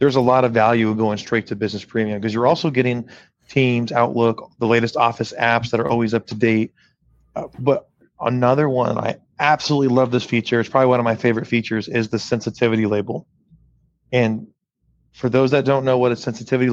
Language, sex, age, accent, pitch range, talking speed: English, male, 30-49, American, 115-140 Hz, 195 wpm